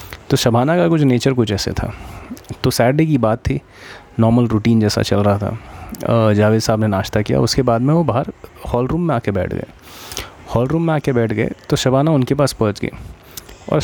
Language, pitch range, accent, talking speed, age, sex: Hindi, 100-125 Hz, native, 210 wpm, 30-49, male